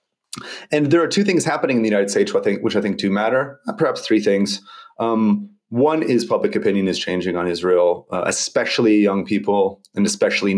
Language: English